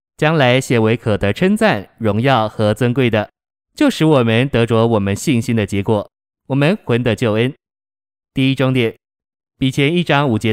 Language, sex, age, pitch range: Chinese, male, 20-39, 110-140 Hz